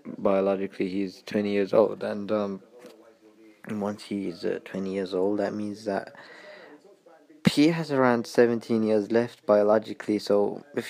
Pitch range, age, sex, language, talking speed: 100-115 Hz, 20-39, male, English, 140 wpm